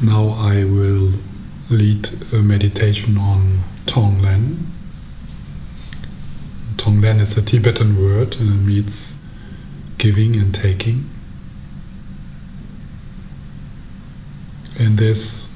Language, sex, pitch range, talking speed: English, male, 95-110 Hz, 80 wpm